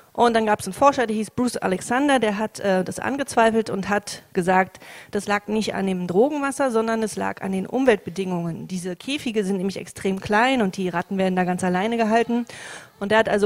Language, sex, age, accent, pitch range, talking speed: English, female, 40-59, German, 190-235 Hz, 215 wpm